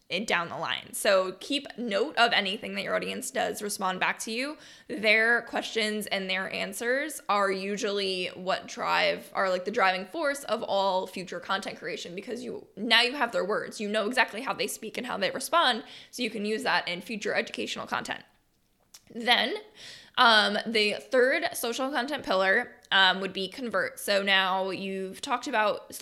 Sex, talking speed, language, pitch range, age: female, 180 wpm, English, 195-250 Hz, 10-29